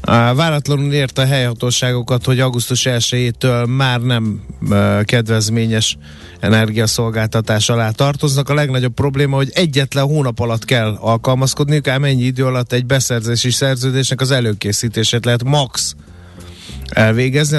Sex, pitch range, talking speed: male, 115-140 Hz, 115 wpm